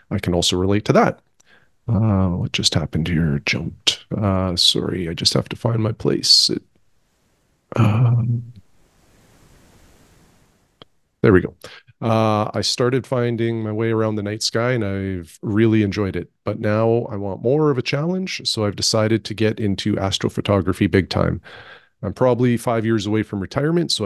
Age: 40-59